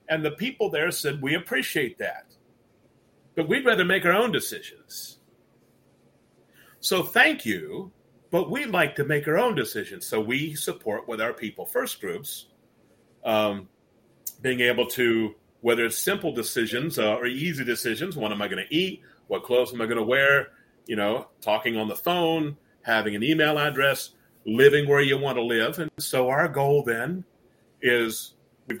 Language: English